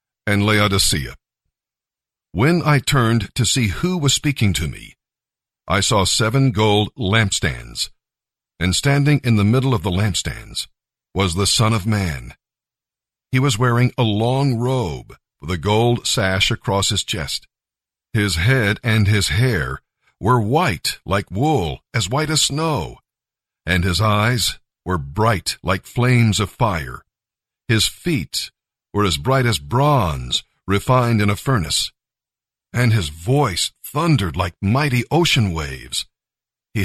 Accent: American